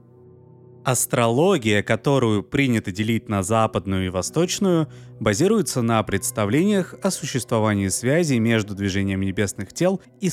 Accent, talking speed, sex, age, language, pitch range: native, 110 wpm, male, 20-39, Russian, 100-140 Hz